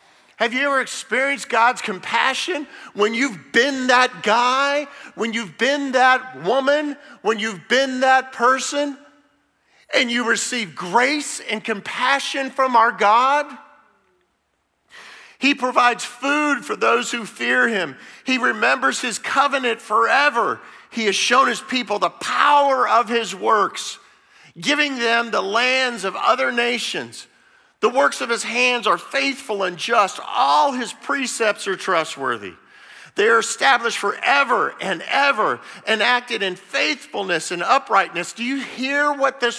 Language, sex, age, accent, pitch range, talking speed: English, male, 50-69, American, 230-275 Hz, 140 wpm